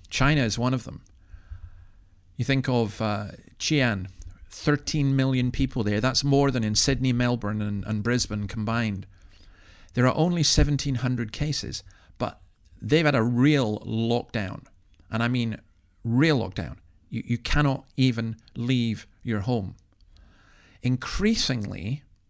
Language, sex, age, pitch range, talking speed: English, male, 40-59, 95-130 Hz, 130 wpm